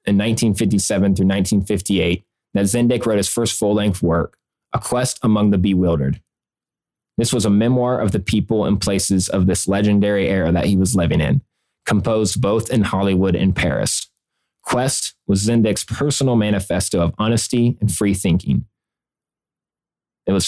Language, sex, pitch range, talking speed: English, male, 95-110 Hz, 150 wpm